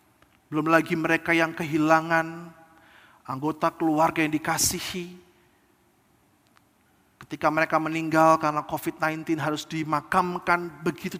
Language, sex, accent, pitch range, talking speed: Indonesian, male, native, 170-260 Hz, 90 wpm